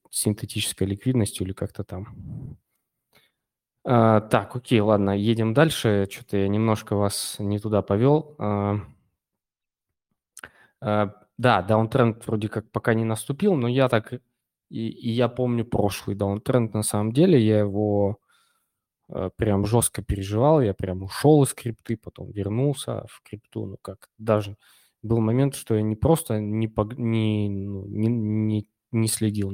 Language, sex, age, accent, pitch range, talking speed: Russian, male, 20-39, native, 100-120 Hz, 145 wpm